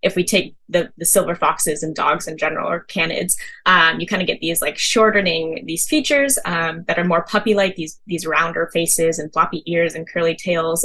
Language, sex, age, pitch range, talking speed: English, female, 10-29, 165-210 Hz, 210 wpm